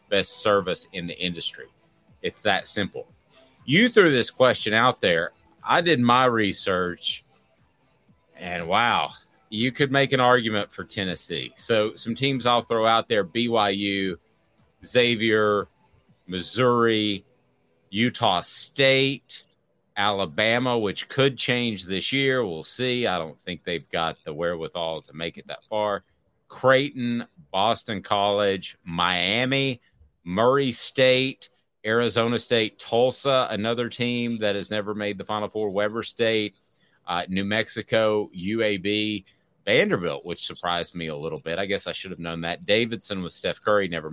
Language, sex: English, male